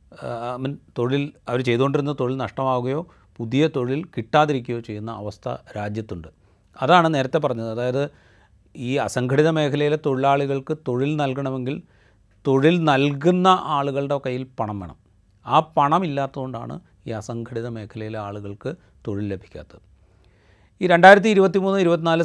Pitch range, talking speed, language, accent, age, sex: 110-145 Hz, 115 wpm, Malayalam, native, 40-59, male